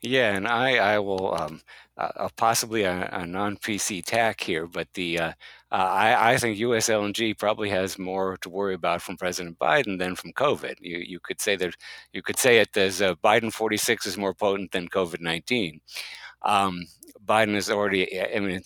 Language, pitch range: English, 90-105 Hz